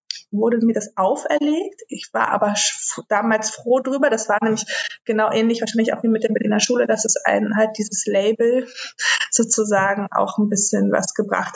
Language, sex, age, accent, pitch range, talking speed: German, female, 20-39, German, 195-230 Hz, 180 wpm